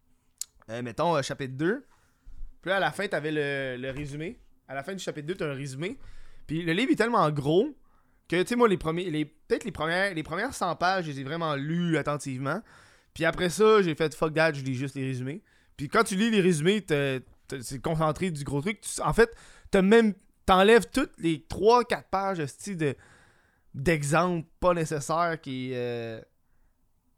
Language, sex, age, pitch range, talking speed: French, male, 20-39, 120-180 Hz, 190 wpm